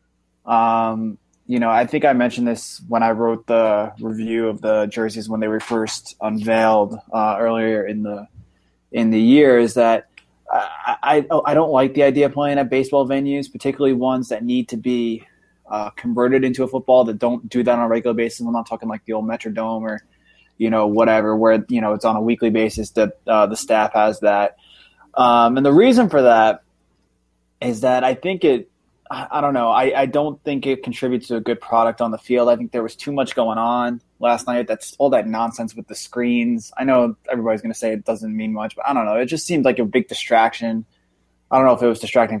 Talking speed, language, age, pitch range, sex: 225 wpm, English, 20-39, 110-120 Hz, male